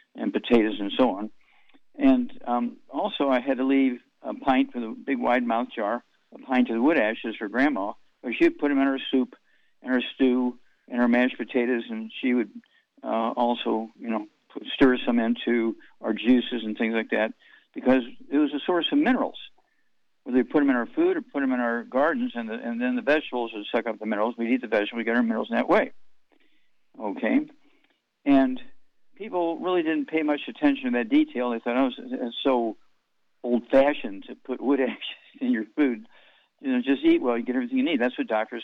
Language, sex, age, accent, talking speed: English, male, 50-69, American, 210 wpm